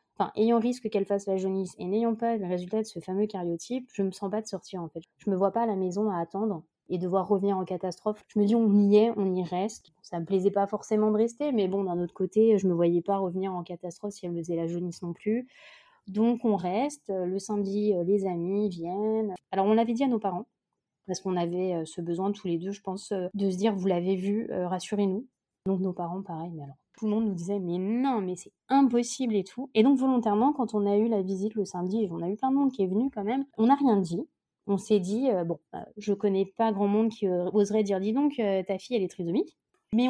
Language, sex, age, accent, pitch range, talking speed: French, female, 20-39, French, 185-220 Hz, 270 wpm